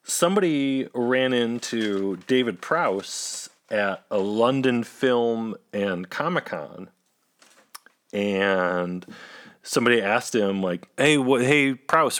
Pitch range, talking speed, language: 105-135 Hz, 100 wpm, English